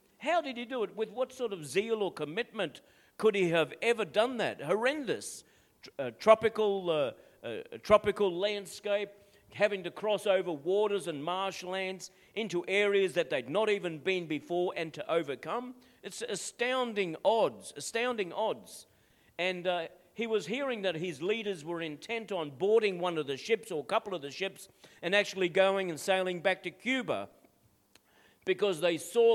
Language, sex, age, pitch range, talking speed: English, male, 50-69, 170-215 Hz, 165 wpm